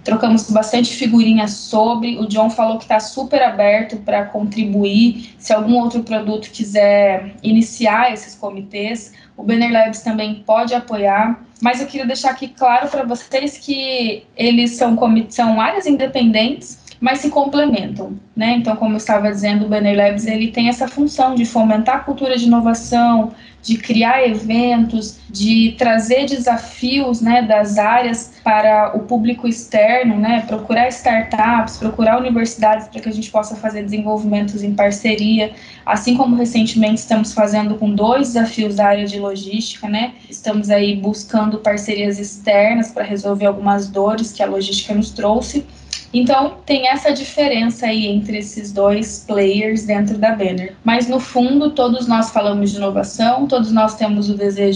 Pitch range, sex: 210-240 Hz, female